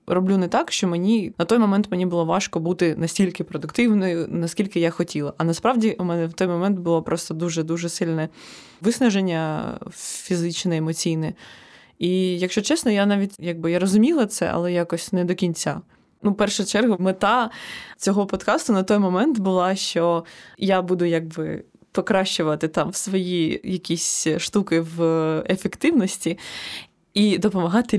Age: 20-39